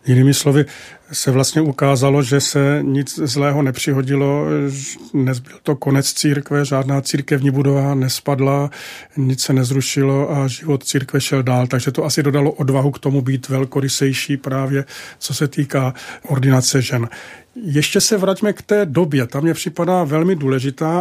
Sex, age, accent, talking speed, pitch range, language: male, 40-59, native, 150 wpm, 135-155 Hz, Czech